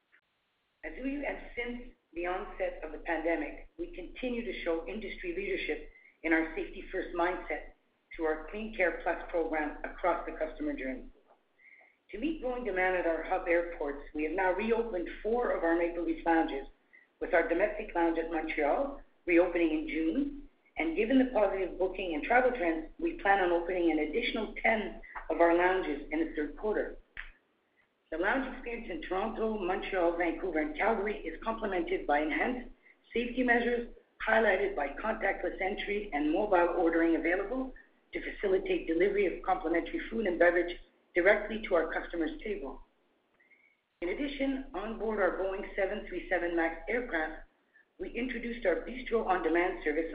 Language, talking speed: English, 155 wpm